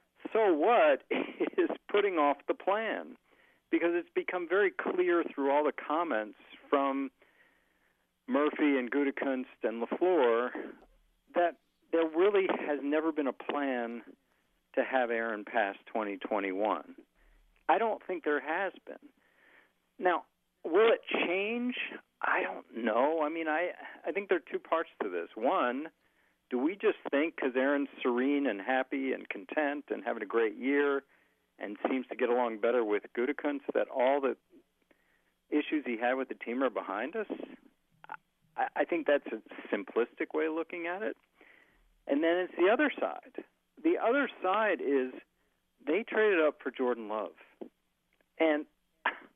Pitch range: 135-215 Hz